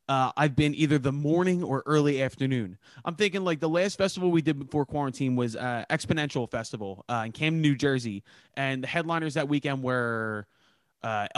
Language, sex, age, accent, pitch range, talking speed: English, male, 20-39, American, 135-180 Hz, 185 wpm